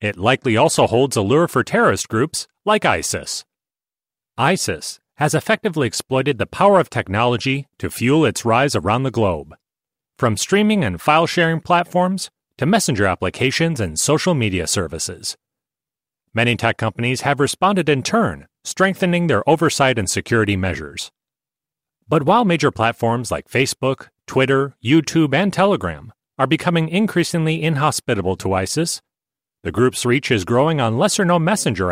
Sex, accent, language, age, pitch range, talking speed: male, American, English, 30-49, 110-165 Hz, 140 wpm